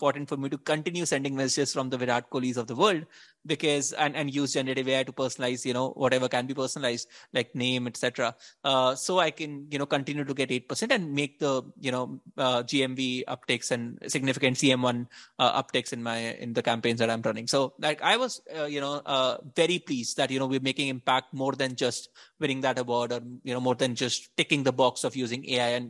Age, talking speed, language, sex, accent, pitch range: 20-39, 225 wpm, English, male, Indian, 125-150 Hz